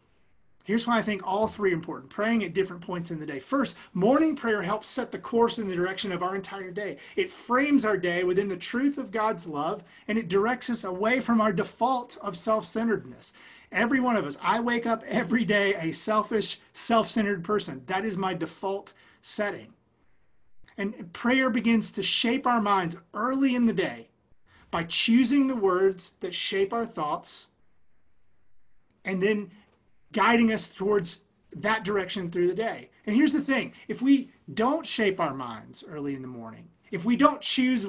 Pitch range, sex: 190-240 Hz, male